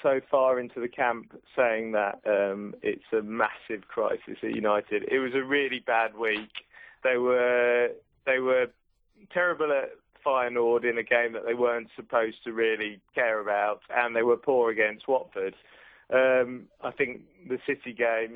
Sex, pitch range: male, 115-135 Hz